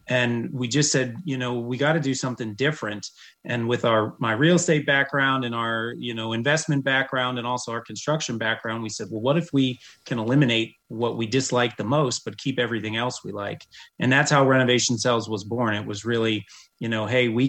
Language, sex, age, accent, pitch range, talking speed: English, male, 30-49, American, 115-135 Hz, 215 wpm